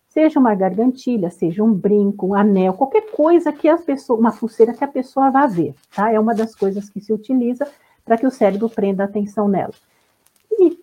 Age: 50-69